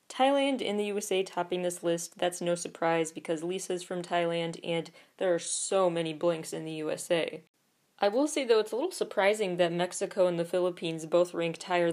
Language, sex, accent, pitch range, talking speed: English, female, American, 170-215 Hz, 195 wpm